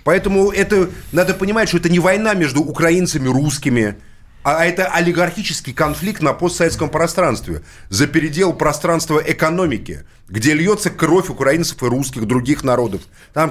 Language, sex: Russian, male